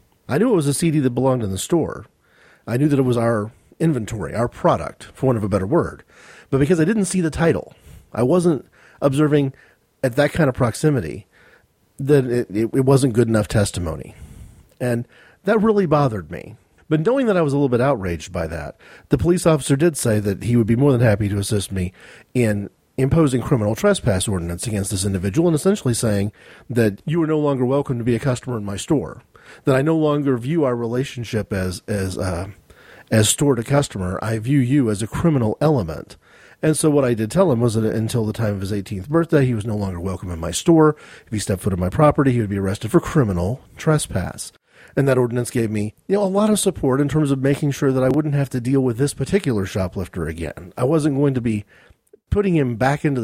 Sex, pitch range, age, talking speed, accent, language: male, 105-145 Hz, 40-59, 225 wpm, American, English